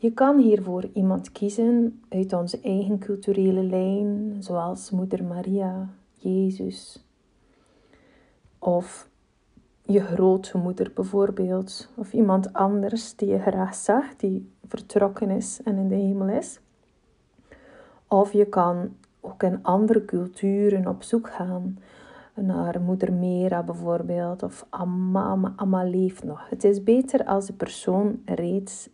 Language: Dutch